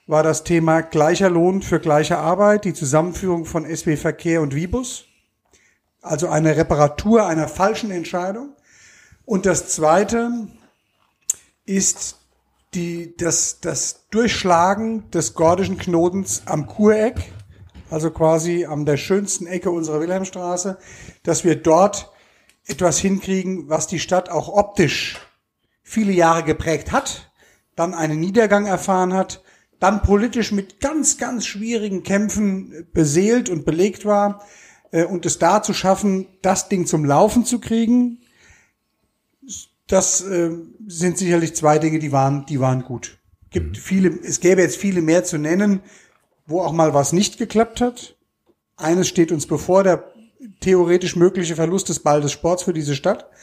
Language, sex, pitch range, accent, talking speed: German, male, 160-200 Hz, German, 140 wpm